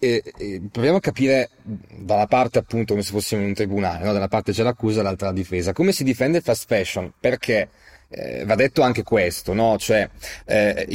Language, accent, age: Italian, native, 30-49